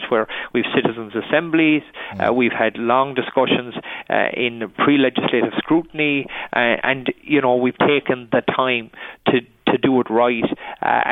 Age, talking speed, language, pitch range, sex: 50-69, 145 wpm, English, 120-135 Hz, male